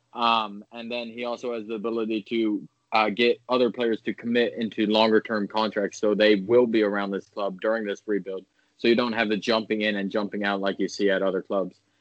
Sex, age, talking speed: male, 20-39, 225 wpm